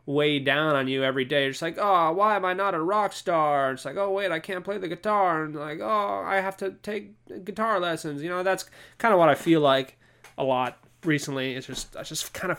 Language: English